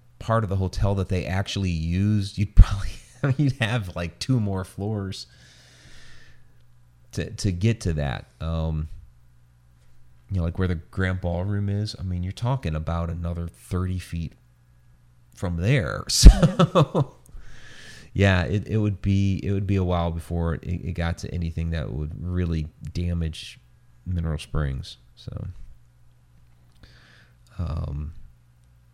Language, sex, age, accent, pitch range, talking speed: English, male, 30-49, American, 80-100 Hz, 135 wpm